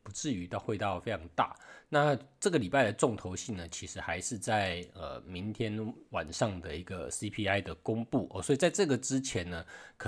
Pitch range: 95-125 Hz